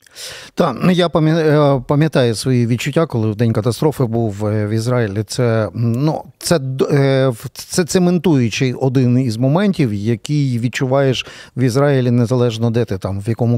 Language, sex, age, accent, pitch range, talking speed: Ukrainian, male, 40-59, native, 120-160 Hz, 135 wpm